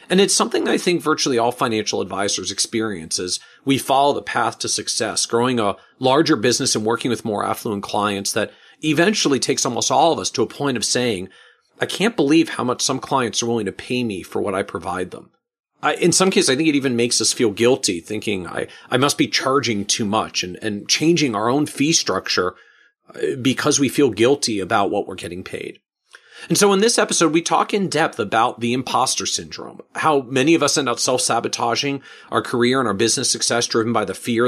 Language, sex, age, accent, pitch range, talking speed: English, male, 40-59, American, 115-150 Hz, 210 wpm